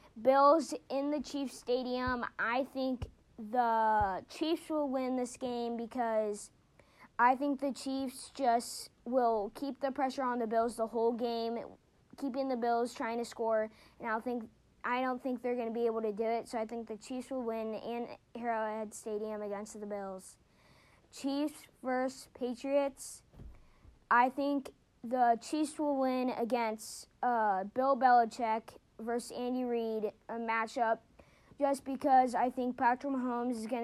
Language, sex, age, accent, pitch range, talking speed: English, female, 20-39, American, 225-265 Hz, 155 wpm